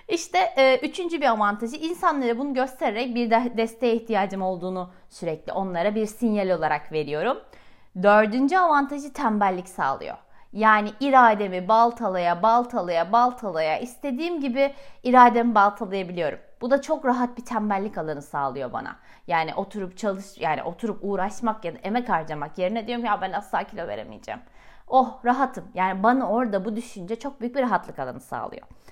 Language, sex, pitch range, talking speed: Turkish, female, 195-255 Hz, 145 wpm